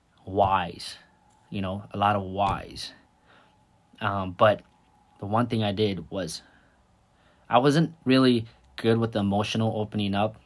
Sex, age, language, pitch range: male, 20-39, English, 100-120 Hz